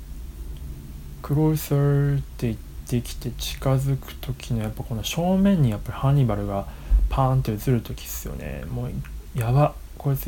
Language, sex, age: Japanese, male, 20-39